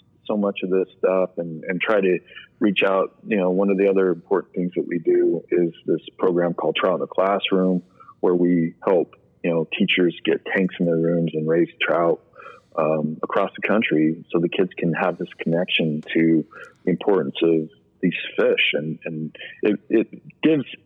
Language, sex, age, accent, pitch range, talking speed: English, male, 40-59, American, 85-105 Hz, 190 wpm